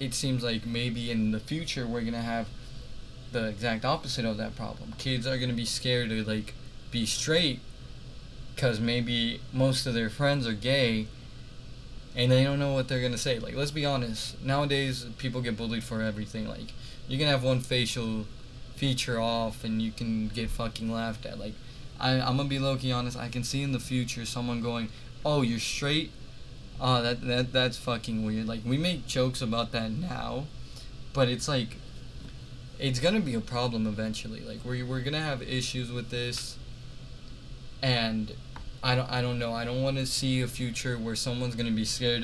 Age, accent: 20-39, American